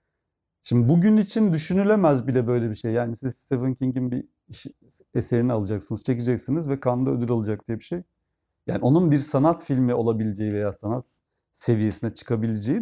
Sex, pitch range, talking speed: male, 100-140 Hz, 155 wpm